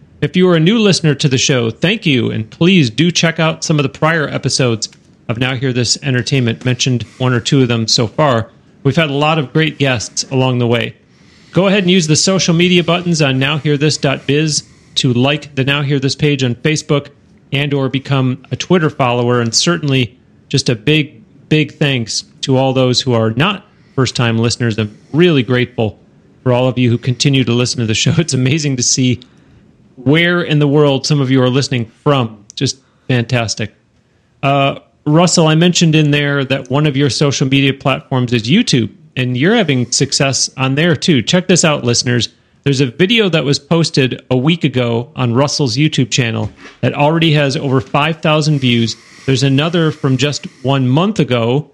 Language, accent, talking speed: English, American, 195 wpm